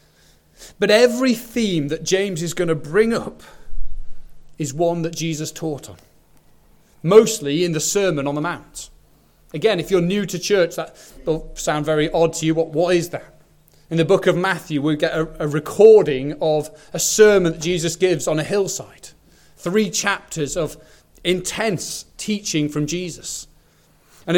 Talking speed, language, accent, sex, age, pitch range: 160 wpm, English, British, male, 30-49, 150-190 Hz